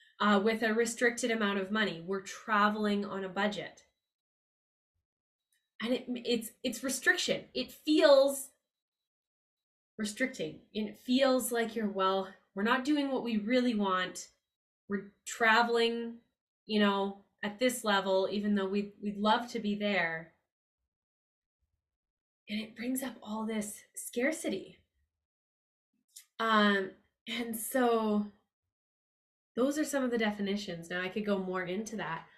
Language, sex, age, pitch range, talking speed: English, female, 10-29, 180-235 Hz, 125 wpm